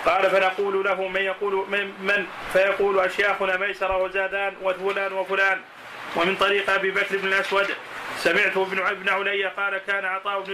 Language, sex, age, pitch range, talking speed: Arabic, male, 30-49, 195-205 Hz, 150 wpm